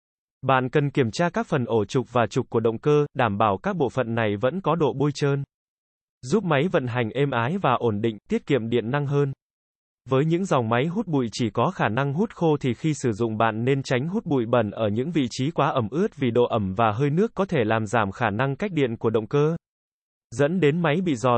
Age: 20-39